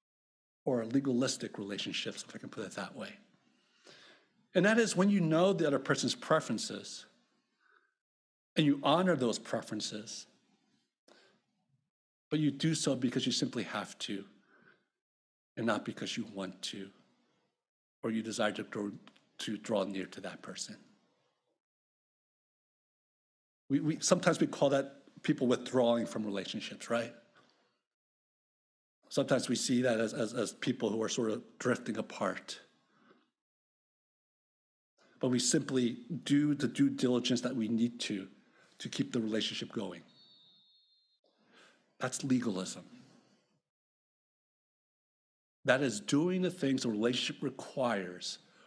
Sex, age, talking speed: male, 50-69, 125 wpm